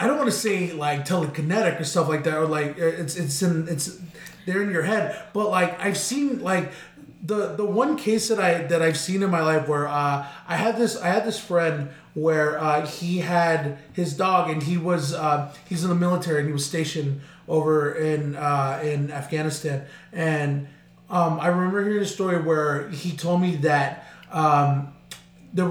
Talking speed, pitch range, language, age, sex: 195 wpm, 150-185 Hz, English, 20-39, male